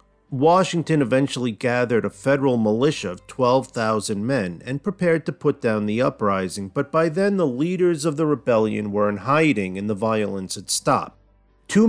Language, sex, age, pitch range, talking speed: English, male, 40-59, 105-150 Hz, 165 wpm